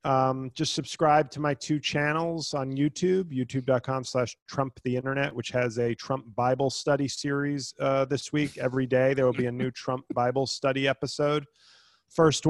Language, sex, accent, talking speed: English, male, American, 175 wpm